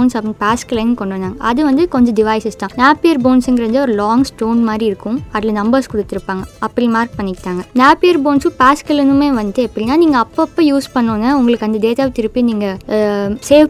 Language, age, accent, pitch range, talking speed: Tamil, 20-39, native, 225-285 Hz, 170 wpm